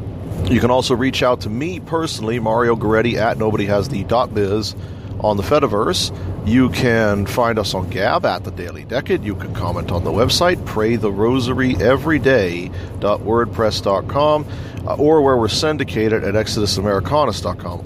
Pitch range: 95-120 Hz